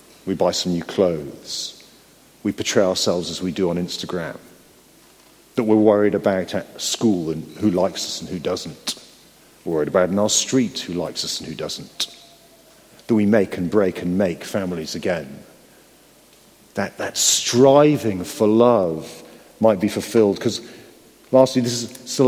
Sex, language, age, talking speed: male, English, 40-59, 160 wpm